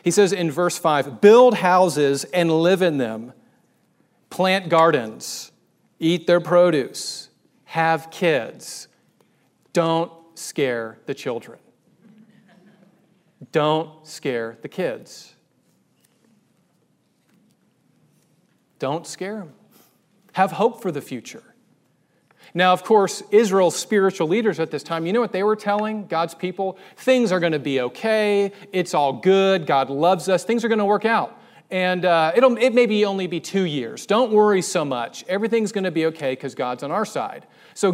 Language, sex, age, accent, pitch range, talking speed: English, male, 40-59, American, 150-195 Hz, 150 wpm